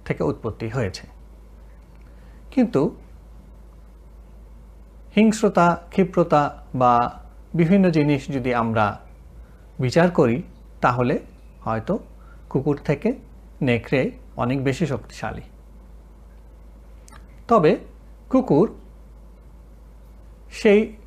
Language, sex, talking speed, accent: Bengali, male, 70 wpm, native